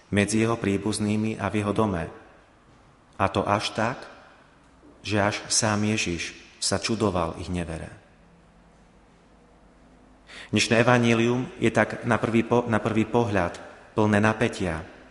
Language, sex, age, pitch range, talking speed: Slovak, male, 30-49, 100-115 Hz, 125 wpm